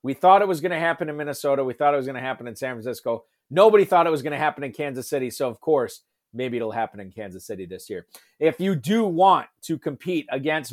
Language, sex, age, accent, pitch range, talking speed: English, male, 40-59, American, 130-165 Hz, 265 wpm